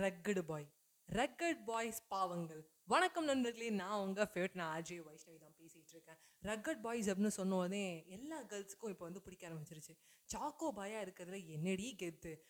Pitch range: 180-270 Hz